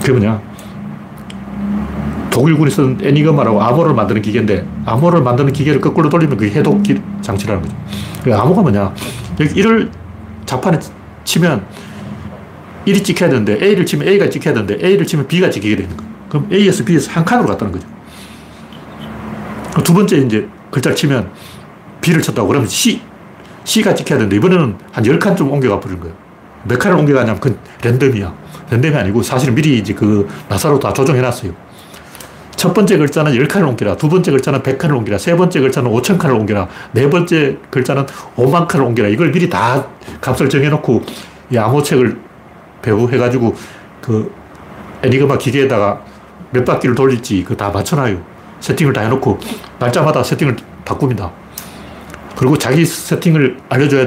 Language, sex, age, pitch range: Korean, male, 40-59, 115-170 Hz